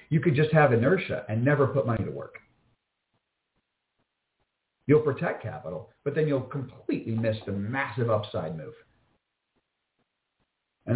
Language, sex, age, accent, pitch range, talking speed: English, male, 50-69, American, 115-145 Hz, 130 wpm